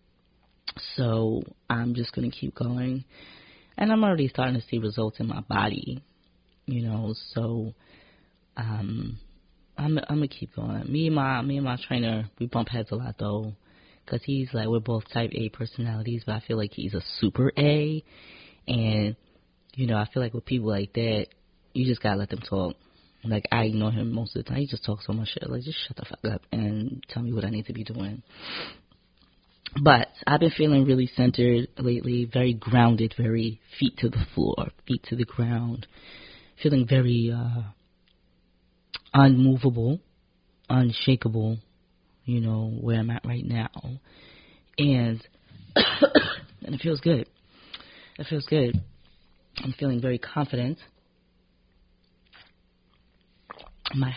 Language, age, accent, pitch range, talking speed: English, 20-39, American, 110-130 Hz, 160 wpm